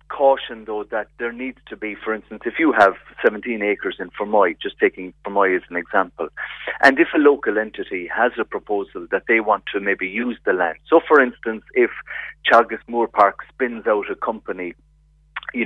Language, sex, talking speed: English, male, 190 wpm